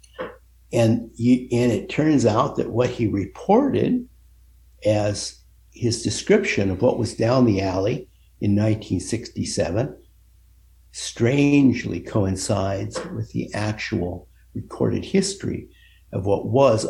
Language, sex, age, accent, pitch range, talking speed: English, male, 60-79, American, 95-125 Hz, 110 wpm